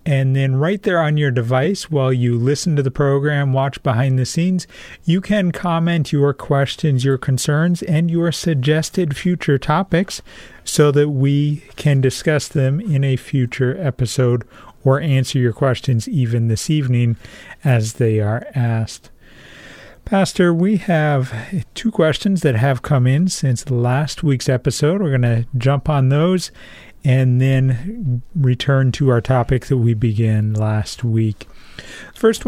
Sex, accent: male, American